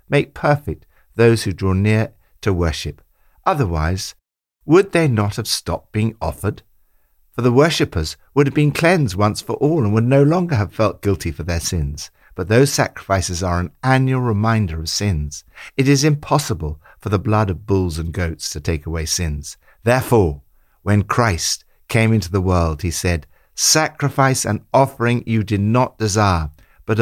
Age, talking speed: 60-79, 170 wpm